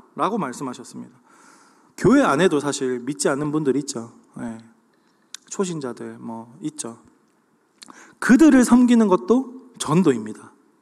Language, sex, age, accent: Korean, male, 20-39, native